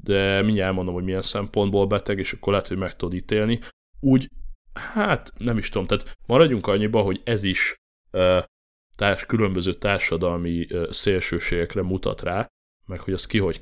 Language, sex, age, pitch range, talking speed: Hungarian, male, 30-49, 85-105 Hz, 155 wpm